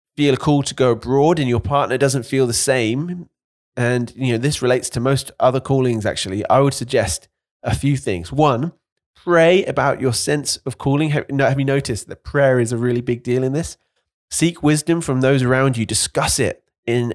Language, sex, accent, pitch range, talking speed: English, male, British, 125-150 Hz, 205 wpm